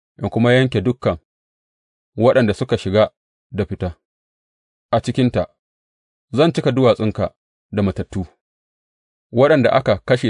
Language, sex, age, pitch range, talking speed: English, male, 30-49, 90-120 Hz, 100 wpm